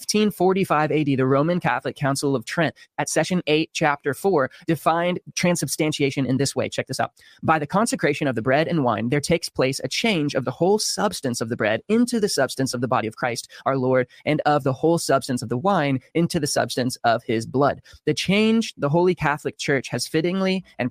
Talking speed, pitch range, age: 210 wpm, 135-170 Hz, 20-39